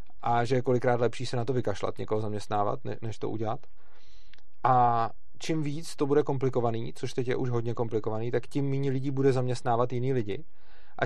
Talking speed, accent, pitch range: 190 wpm, native, 115-130 Hz